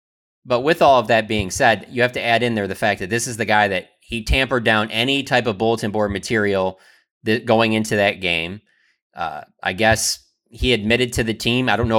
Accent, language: American, English